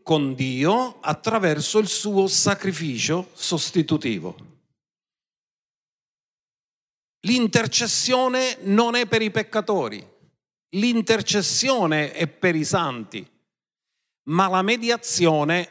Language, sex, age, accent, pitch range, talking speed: Italian, male, 50-69, native, 160-220 Hz, 80 wpm